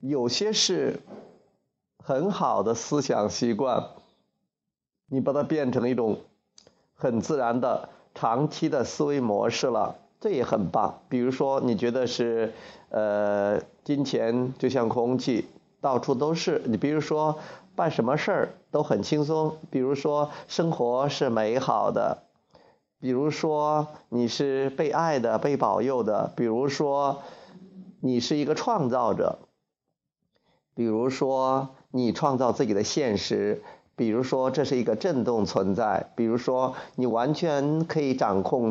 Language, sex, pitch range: Chinese, male, 120-155 Hz